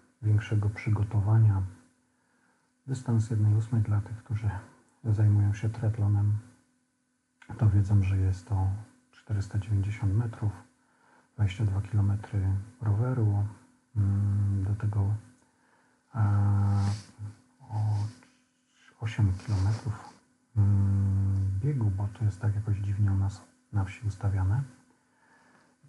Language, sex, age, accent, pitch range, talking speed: Polish, male, 40-59, native, 100-115 Hz, 90 wpm